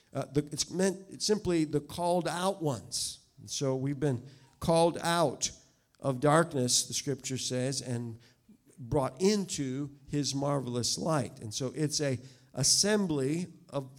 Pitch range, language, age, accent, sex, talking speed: 120-145 Hz, English, 50-69, American, male, 140 wpm